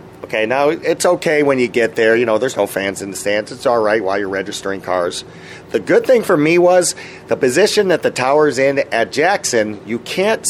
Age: 40-59